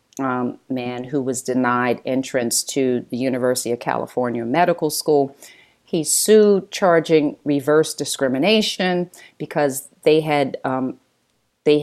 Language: English